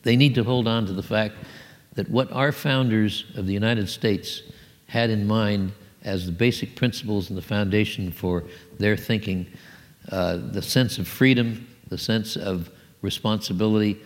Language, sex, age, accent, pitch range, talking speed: English, male, 60-79, American, 100-125 Hz, 160 wpm